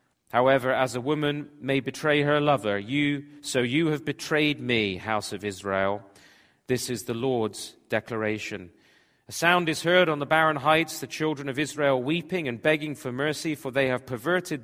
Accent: British